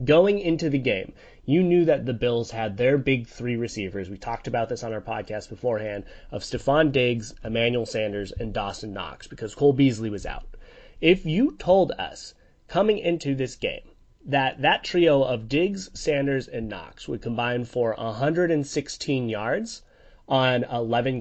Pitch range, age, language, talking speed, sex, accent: 115-145 Hz, 30-49, English, 165 wpm, male, American